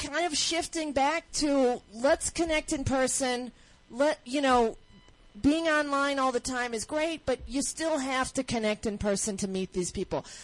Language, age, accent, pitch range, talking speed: English, 40-59, American, 215-270 Hz, 180 wpm